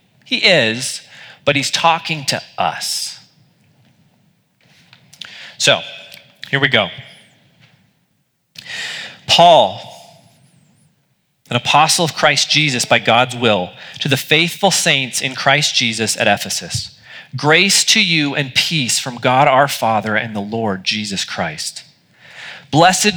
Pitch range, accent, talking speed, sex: 135-175 Hz, American, 115 wpm, male